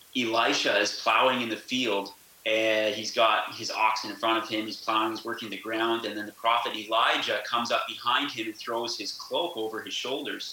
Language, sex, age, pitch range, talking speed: English, male, 30-49, 110-125 Hz, 210 wpm